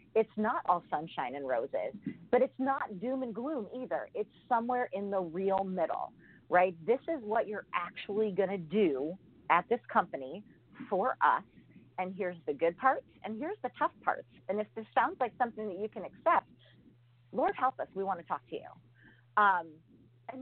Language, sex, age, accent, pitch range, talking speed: English, female, 40-59, American, 170-250 Hz, 190 wpm